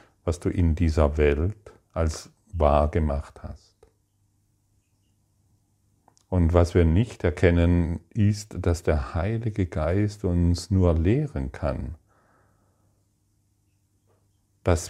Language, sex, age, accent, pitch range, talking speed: German, male, 40-59, German, 80-100 Hz, 95 wpm